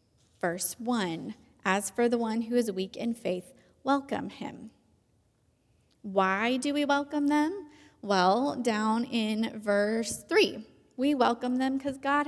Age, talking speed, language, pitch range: 20-39, 135 wpm, English, 180-235 Hz